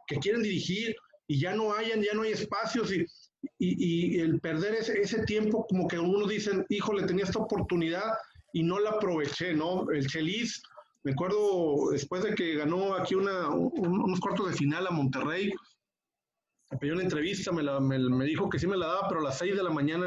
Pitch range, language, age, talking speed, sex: 165-210 Hz, Spanish, 40-59, 210 wpm, male